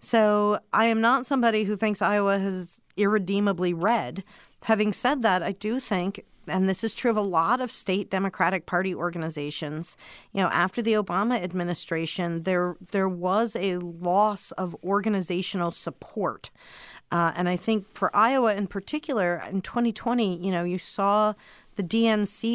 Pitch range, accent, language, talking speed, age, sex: 170-215 Hz, American, English, 155 wpm, 50-69, female